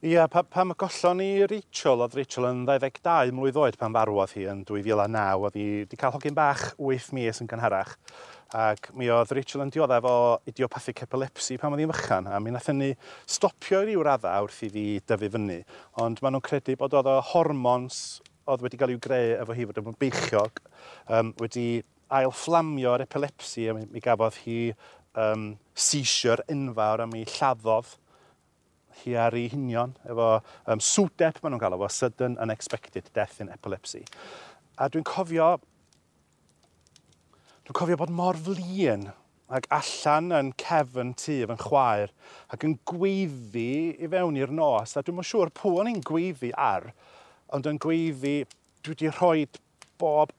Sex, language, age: male, English, 40-59